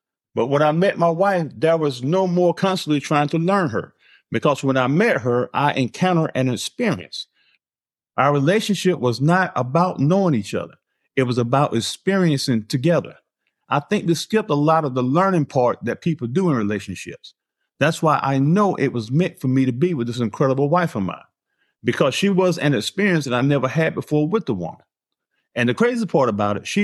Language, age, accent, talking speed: English, 50-69, American, 200 wpm